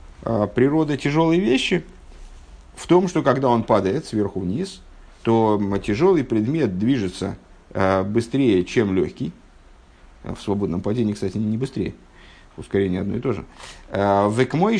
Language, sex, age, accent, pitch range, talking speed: Russian, male, 50-69, native, 95-135 Hz, 120 wpm